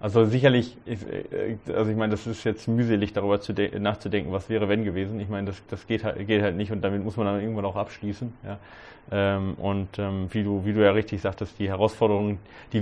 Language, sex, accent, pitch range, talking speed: German, male, German, 100-115 Hz, 210 wpm